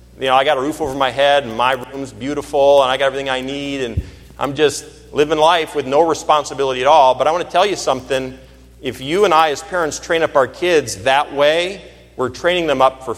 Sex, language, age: male, English, 40-59